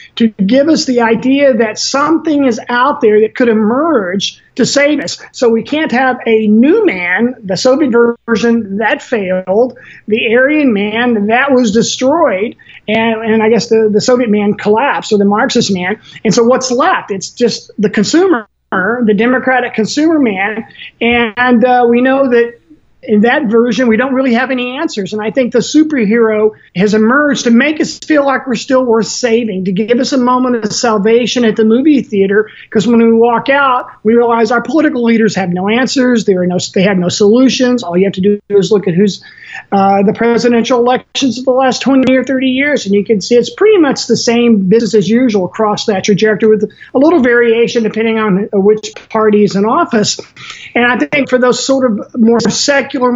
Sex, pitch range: male, 215-255 Hz